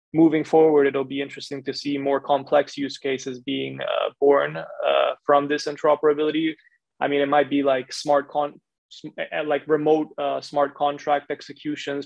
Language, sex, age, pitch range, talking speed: English, male, 20-39, 135-150 Hz, 165 wpm